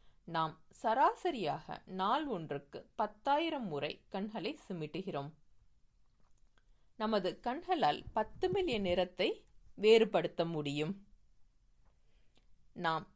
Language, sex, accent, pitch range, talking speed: Tamil, female, native, 145-195 Hz, 75 wpm